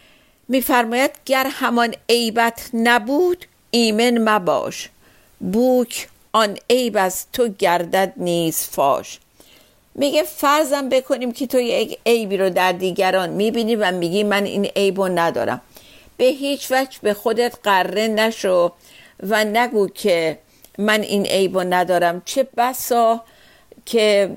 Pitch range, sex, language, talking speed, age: 190-240 Hz, female, Persian, 120 wpm, 50-69